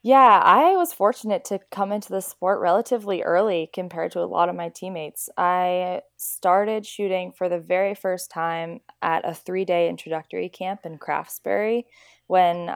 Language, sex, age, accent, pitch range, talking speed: English, female, 20-39, American, 165-195 Hz, 160 wpm